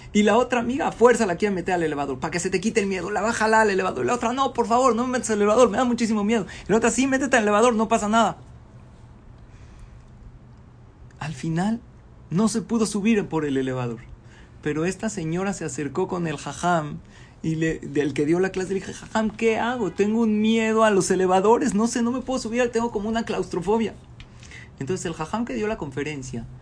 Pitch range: 150-220 Hz